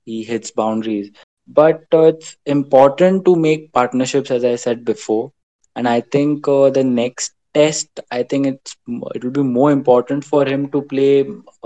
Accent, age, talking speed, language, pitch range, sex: Indian, 20-39, 175 wpm, English, 120-145 Hz, male